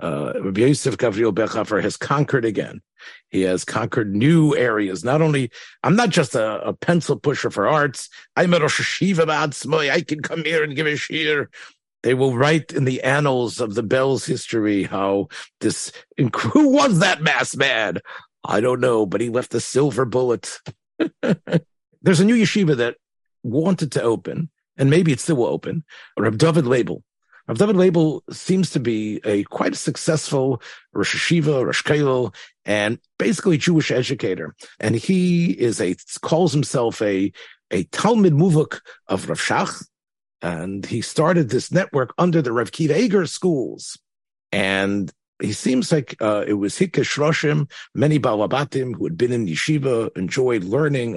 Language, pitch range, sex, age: English, 115-165 Hz, male, 50-69